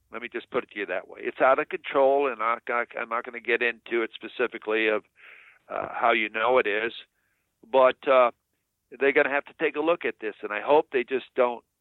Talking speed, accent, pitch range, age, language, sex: 240 wpm, American, 115-190 Hz, 50-69, English, male